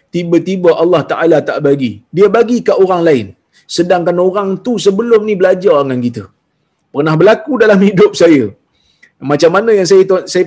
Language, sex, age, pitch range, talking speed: Malayalam, male, 30-49, 165-220 Hz, 160 wpm